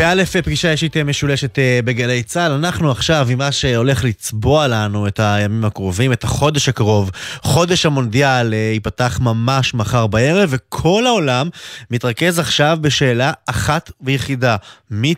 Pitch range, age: 105-140 Hz, 20-39